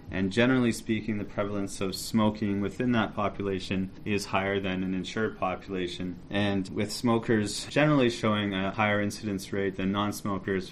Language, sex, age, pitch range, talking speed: English, male, 30-49, 95-115 Hz, 150 wpm